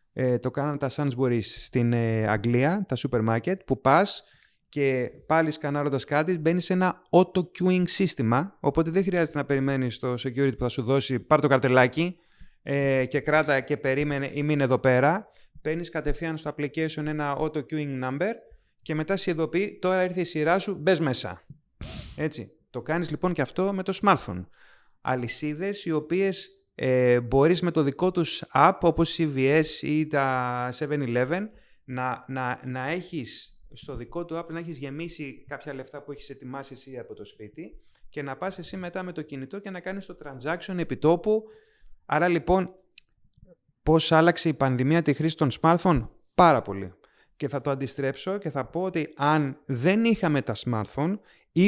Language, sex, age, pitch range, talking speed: Greek, male, 30-49, 130-175 Hz, 170 wpm